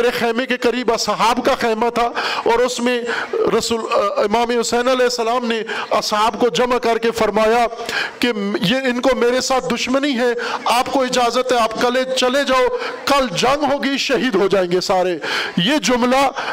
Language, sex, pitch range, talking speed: Urdu, male, 235-275 Hz, 175 wpm